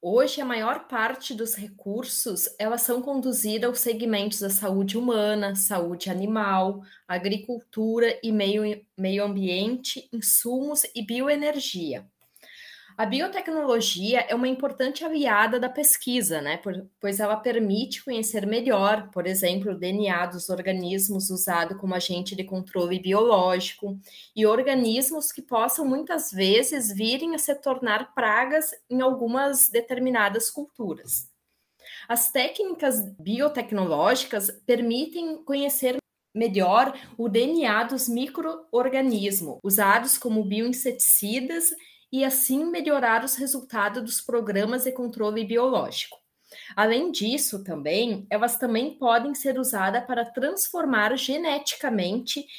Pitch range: 205-265 Hz